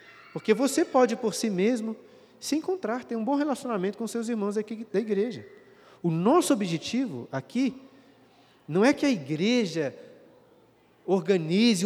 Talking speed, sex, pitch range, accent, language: 140 wpm, male, 160-220 Hz, Brazilian, Portuguese